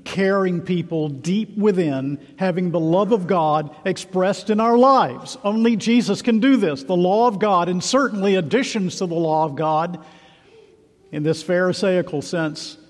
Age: 50-69